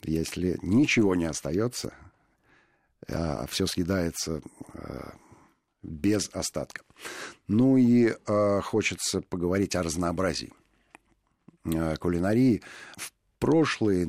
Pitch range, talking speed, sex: 80-105 Hz, 70 wpm, male